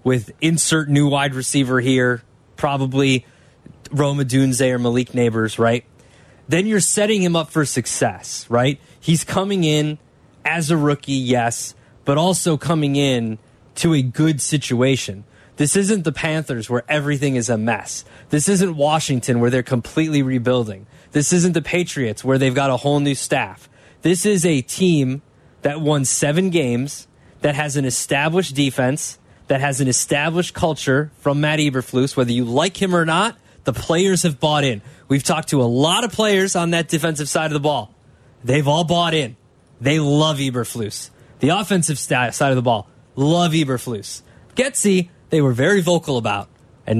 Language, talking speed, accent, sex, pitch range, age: English, 170 wpm, American, male, 130-160 Hz, 20-39